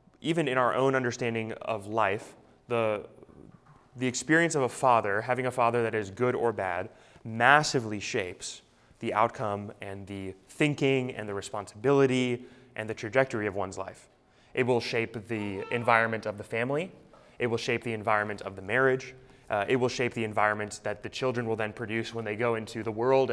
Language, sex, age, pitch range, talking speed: English, male, 20-39, 110-130 Hz, 185 wpm